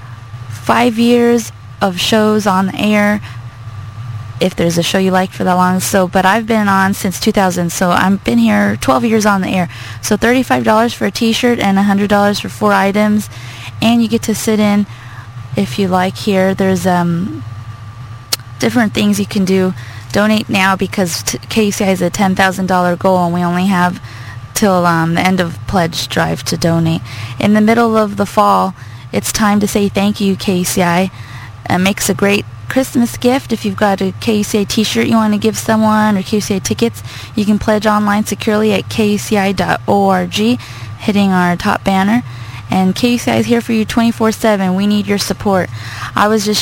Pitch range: 170-210 Hz